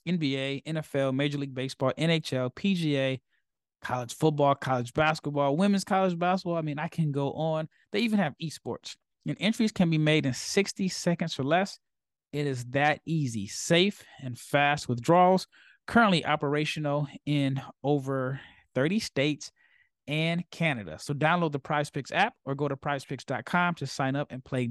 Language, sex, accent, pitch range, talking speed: English, male, American, 135-170 Hz, 155 wpm